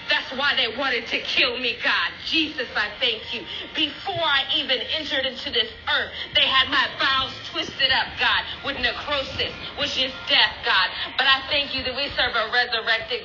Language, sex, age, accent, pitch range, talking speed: English, female, 40-59, American, 230-285 Hz, 185 wpm